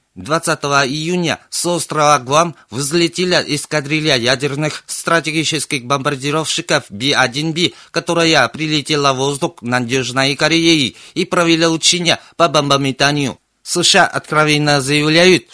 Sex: male